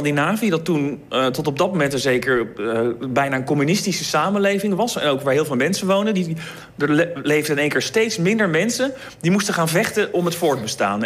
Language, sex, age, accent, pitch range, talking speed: Dutch, male, 40-59, Dutch, 125-180 Hz, 205 wpm